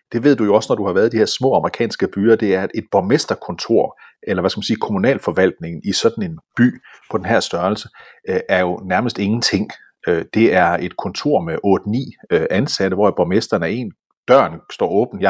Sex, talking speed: male, 210 wpm